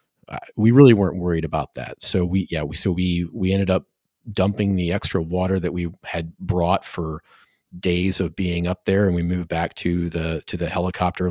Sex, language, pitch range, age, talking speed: male, English, 85-100 Hz, 30-49, 200 wpm